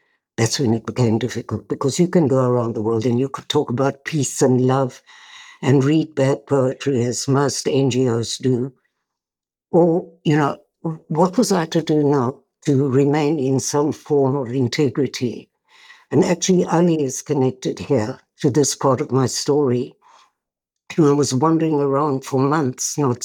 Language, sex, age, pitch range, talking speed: English, female, 60-79, 125-150 Hz, 165 wpm